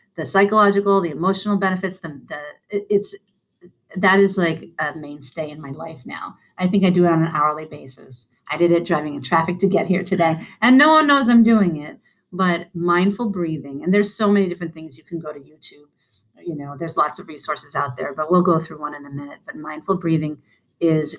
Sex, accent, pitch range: female, American, 155-210 Hz